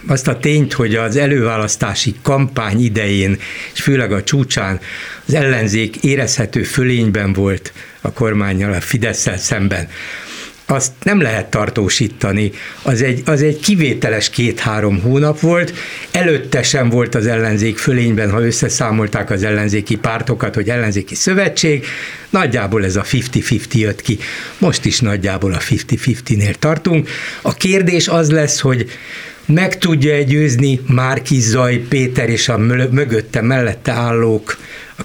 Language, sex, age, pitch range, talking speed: Hungarian, male, 60-79, 110-145 Hz, 130 wpm